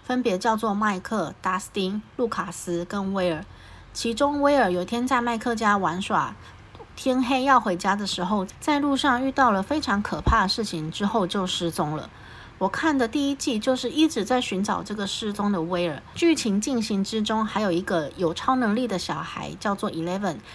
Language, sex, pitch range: Chinese, female, 175-235 Hz